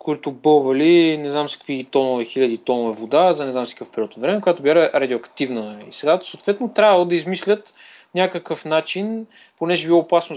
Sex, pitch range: male, 130-190 Hz